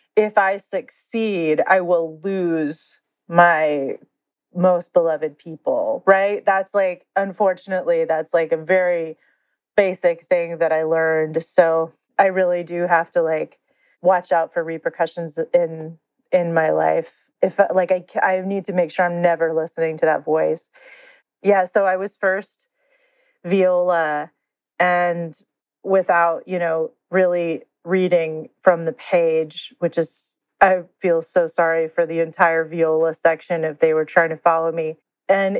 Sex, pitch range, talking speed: female, 165-195 Hz, 145 wpm